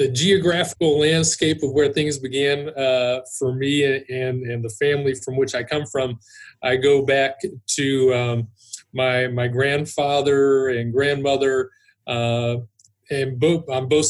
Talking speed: 145 wpm